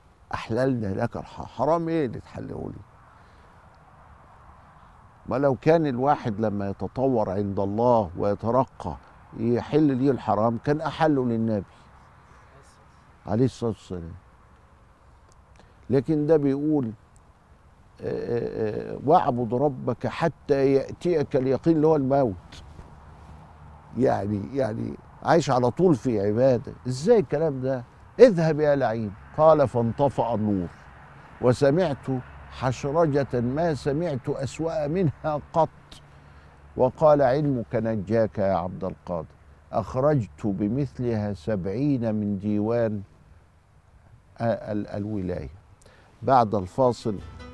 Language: Arabic